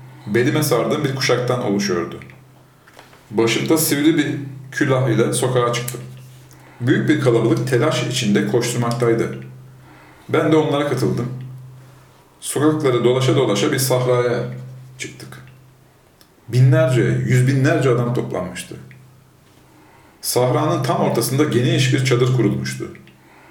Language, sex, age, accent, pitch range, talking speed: Turkish, male, 40-59, native, 115-135 Hz, 100 wpm